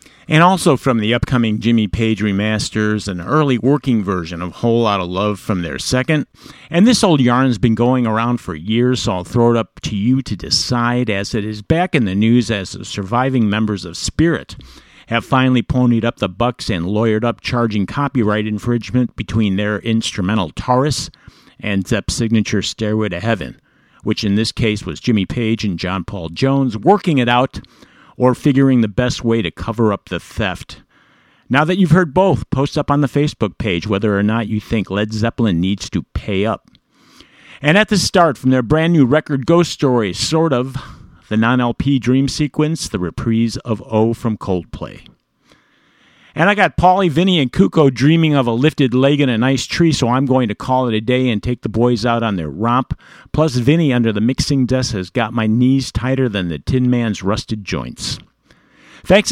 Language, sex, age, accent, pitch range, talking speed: English, male, 50-69, American, 105-135 Hz, 195 wpm